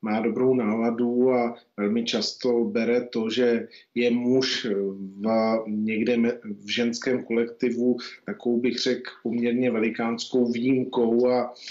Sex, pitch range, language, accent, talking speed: male, 115-125 Hz, Czech, native, 115 wpm